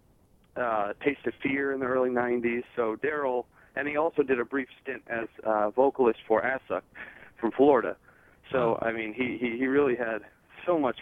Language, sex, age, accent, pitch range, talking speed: English, male, 40-59, American, 110-135 Hz, 185 wpm